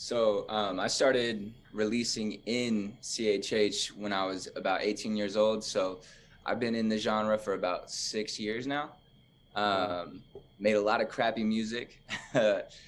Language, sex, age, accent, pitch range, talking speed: English, male, 20-39, American, 95-115 Hz, 155 wpm